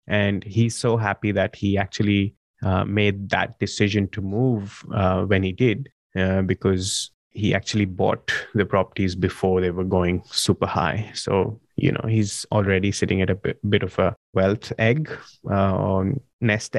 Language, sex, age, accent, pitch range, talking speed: English, male, 20-39, Indian, 95-115 Hz, 170 wpm